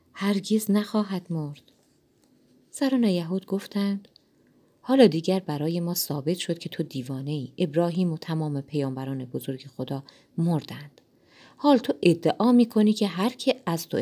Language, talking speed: Persian, 135 wpm